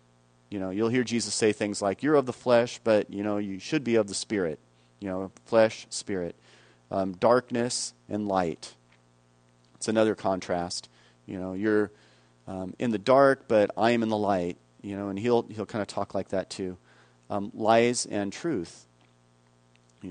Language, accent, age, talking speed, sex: English, American, 40-59, 180 wpm, male